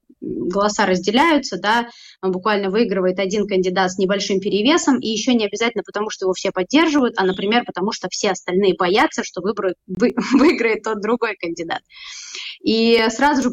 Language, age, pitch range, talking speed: Russian, 20-39, 185-230 Hz, 165 wpm